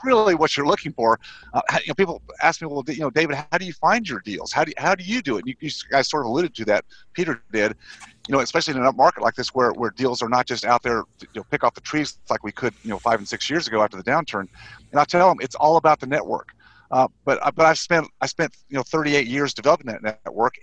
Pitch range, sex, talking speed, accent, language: 130-165 Hz, male, 290 wpm, American, English